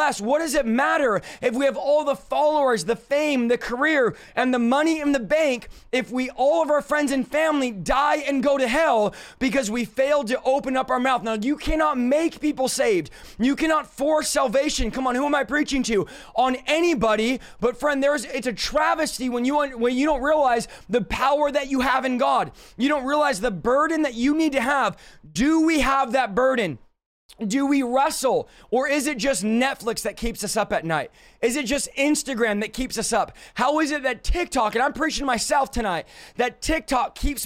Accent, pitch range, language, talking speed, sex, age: American, 250-295 Hz, English, 210 wpm, male, 20-39